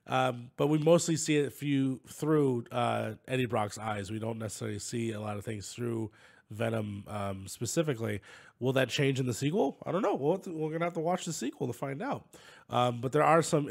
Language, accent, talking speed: English, American, 215 wpm